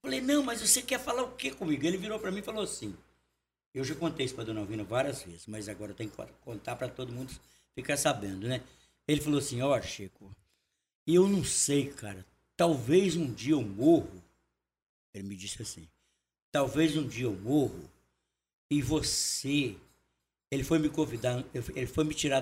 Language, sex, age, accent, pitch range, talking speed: Portuguese, male, 60-79, Brazilian, 100-155 Hz, 190 wpm